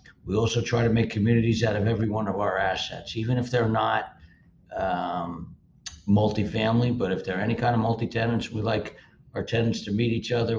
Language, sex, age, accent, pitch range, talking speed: English, male, 60-79, American, 95-115 Hz, 195 wpm